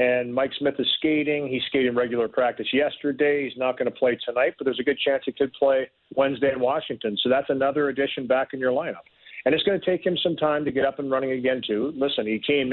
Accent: American